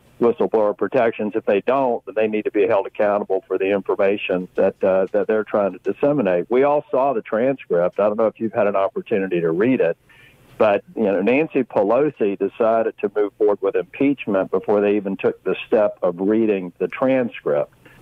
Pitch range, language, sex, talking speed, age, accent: 100-120 Hz, English, male, 195 wpm, 50-69, American